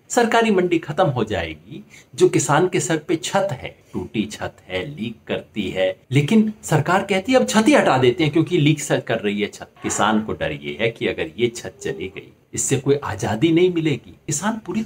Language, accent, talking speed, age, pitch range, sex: Hindi, native, 220 wpm, 60-79, 115-185 Hz, male